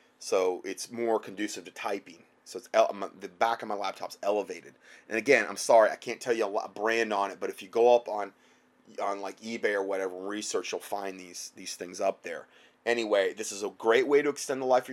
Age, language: 30-49, English